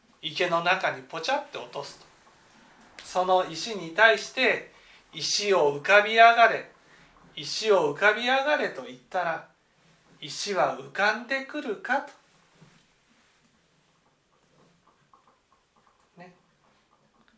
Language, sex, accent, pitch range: Japanese, male, native, 150-200 Hz